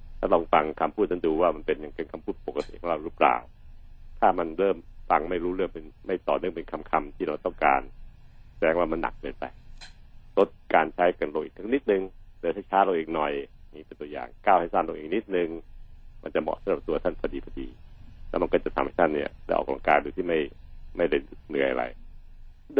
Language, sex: Thai, male